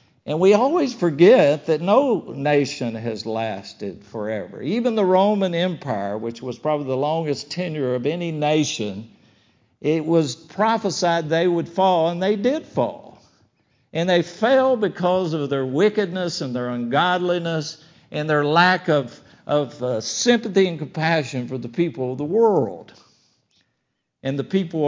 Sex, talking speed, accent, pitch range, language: male, 145 wpm, American, 130-195 Hz, English